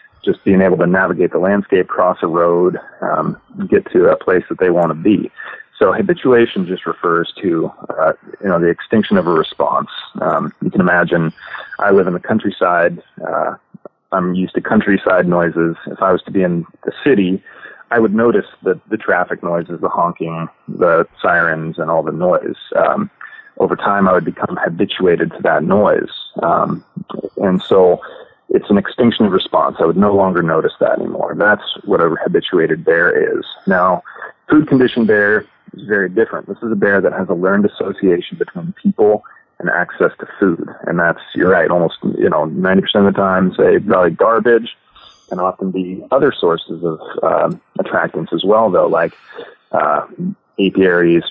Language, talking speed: English, 175 wpm